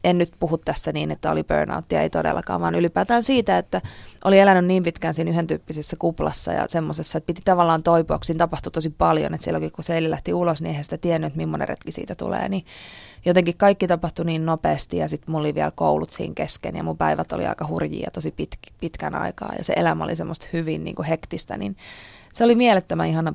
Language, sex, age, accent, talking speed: Finnish, female, 20-39, native, 215 wpm